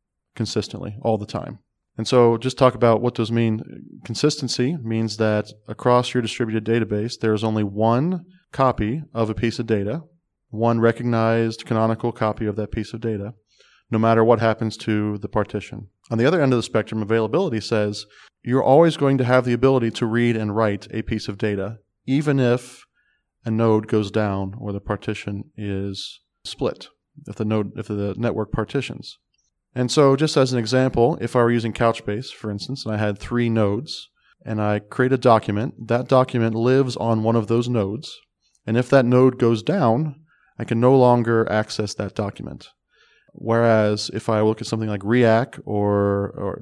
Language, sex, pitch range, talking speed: English, male, 105-125 Hz, 180 wpm